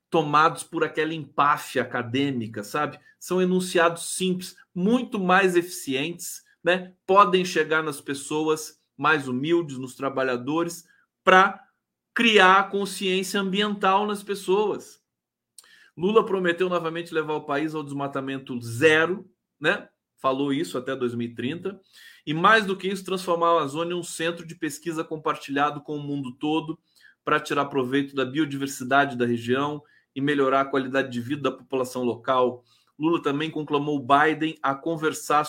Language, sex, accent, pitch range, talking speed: Portuguese, male, Brazilian, 135-175 Hz, 140 wpm